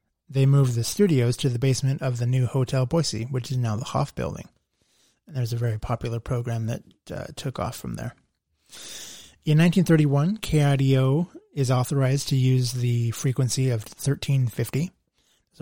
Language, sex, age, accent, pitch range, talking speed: English, male, 20-39, American, 120-135 Hz, 160 wpm